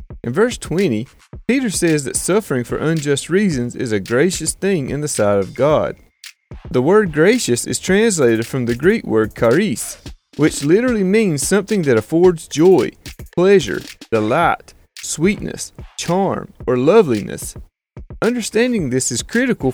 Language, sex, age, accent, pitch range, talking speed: English, male, 30-49, American, 120-190 Hz, 140 wpm